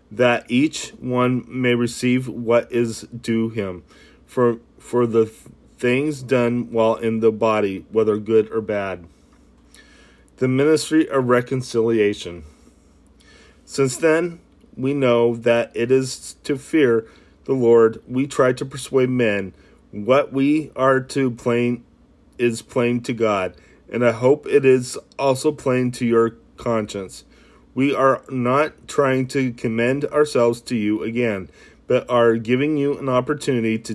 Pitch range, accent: 115-130 Hz, American